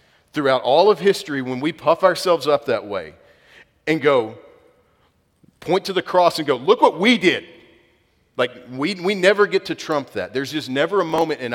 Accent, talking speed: American, 190 wpm